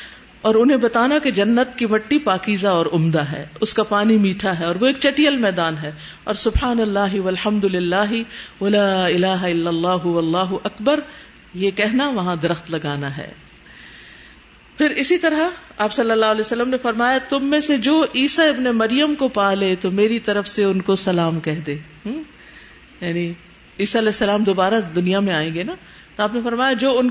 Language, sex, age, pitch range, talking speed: Urdu, female, 50-69, 185-255 Hz, 180 wpm